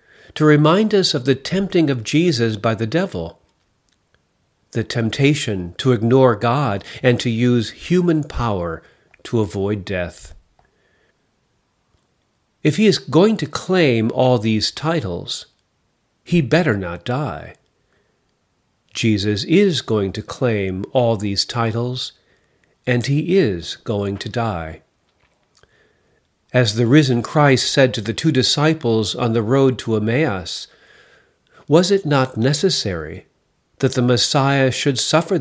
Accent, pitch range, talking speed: American, 105-145 Hz, 125 wpm